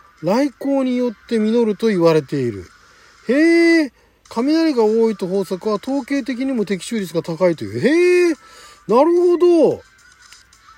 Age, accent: 40-59, native